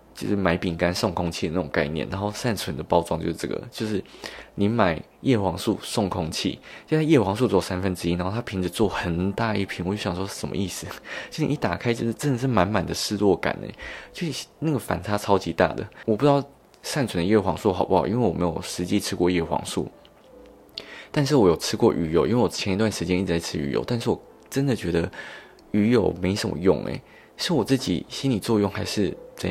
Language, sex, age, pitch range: Chinese, male, 20-39, 90-110 Hz